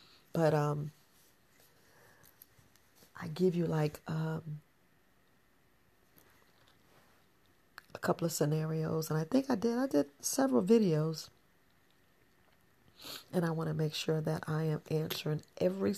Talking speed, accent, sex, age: 115 wpm, American, female, 40-59